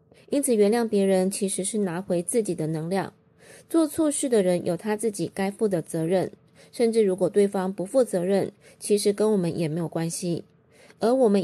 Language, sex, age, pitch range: Chinese, female, 20-39, 180-225 Hz